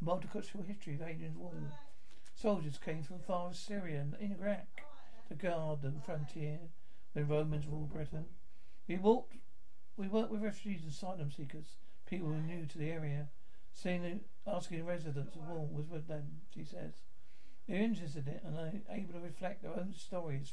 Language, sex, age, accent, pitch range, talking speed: English, male, 60-79, British, 150-190 Hz, 180 wpm